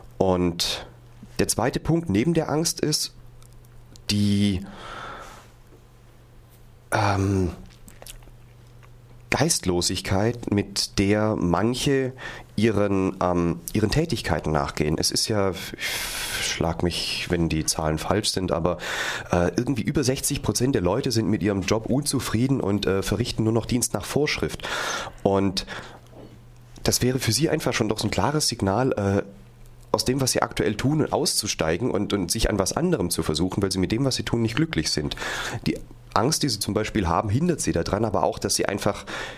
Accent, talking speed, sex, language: German, 155 wpm, male, German